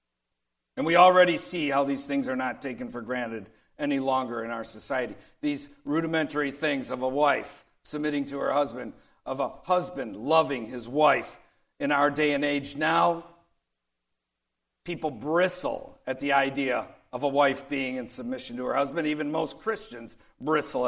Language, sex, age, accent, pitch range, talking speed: English, male, 50-69, American, 120-160 Hz, 165 wpm